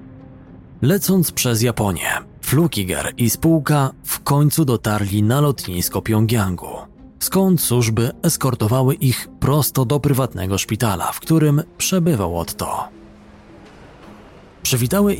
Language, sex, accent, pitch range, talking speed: Polish, male, native, 105-150 Hz, 100 wpm